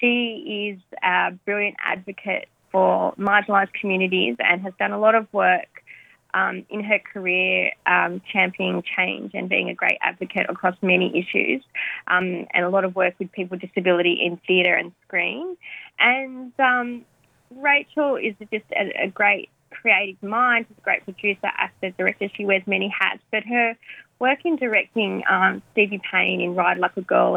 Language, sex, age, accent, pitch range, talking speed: English, female, 20-39, Australian, 180-215 Hz, 165 wpm